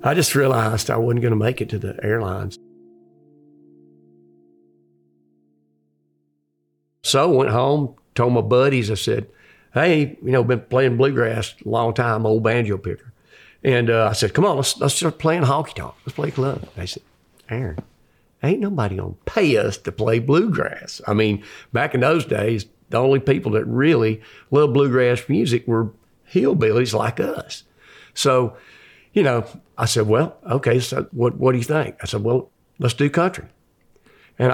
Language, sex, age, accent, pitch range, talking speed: English, male, 50-69, American, 105-125 Hz, 170 wpm